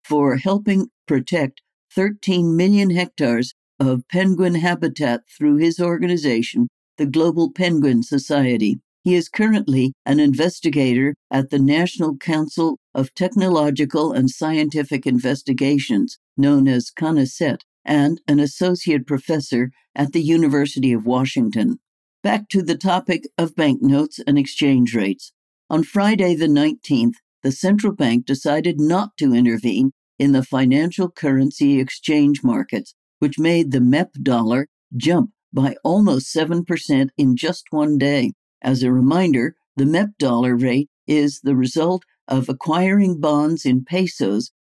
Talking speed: 130 wpm